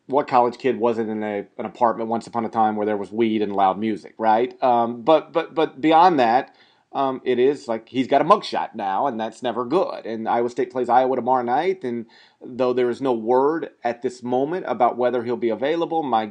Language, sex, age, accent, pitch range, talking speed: English, male, 40-59, American, 115-150 Hz, 225 wpm